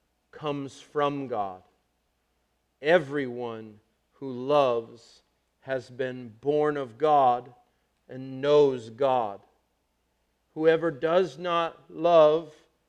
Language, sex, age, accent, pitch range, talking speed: English, male, 40-59, American, 115-150 Hz, 85 wpm